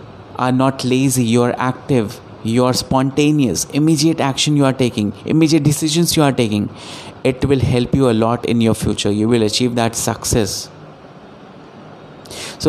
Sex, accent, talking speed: male, native, 165 wpm